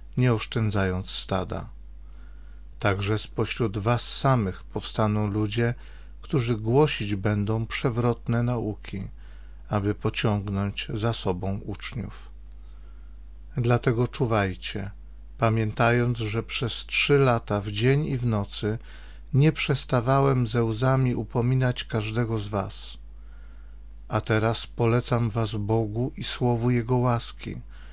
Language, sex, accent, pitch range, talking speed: Polish, male, native, 95-120 Hz, 105 wpm